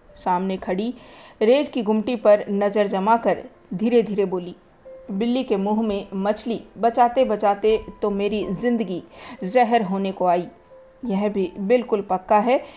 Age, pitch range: 40-59, 195-245 Hz